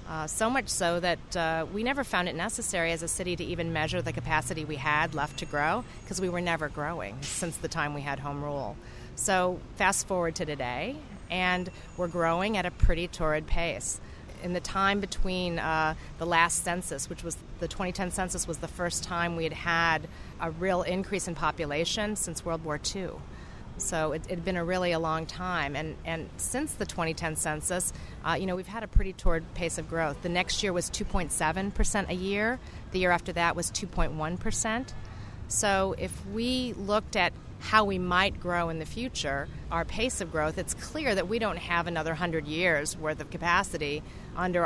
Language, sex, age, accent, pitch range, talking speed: English, female, 40-59, American, 160-185 Hz, 210 wpm